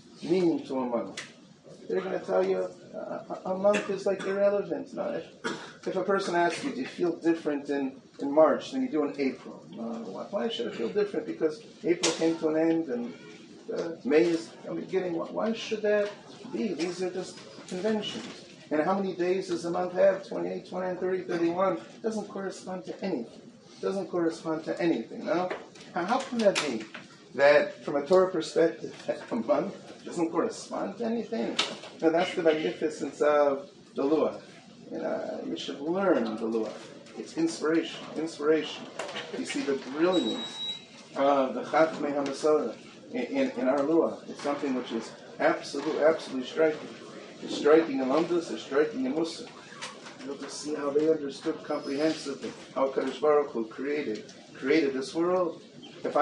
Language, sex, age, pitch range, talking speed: English, male, 40-59, 150-195 Hz, 170 wpm